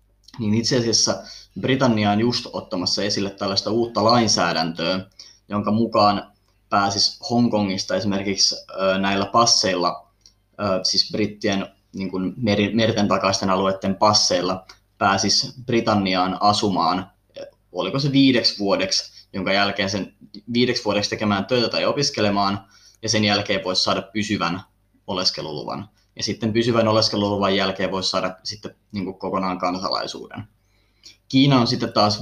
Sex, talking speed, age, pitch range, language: male, 115 wpm, 20-39, 95-115 Hz, Finnish